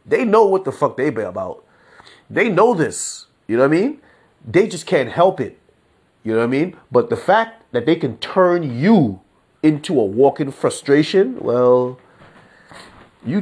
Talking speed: 175 wpm